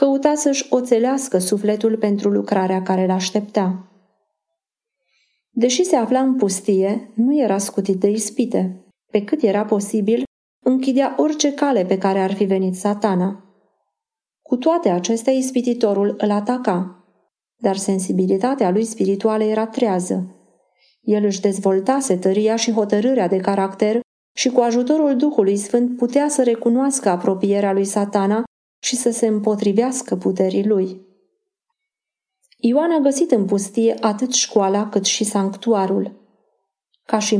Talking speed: 130 wpm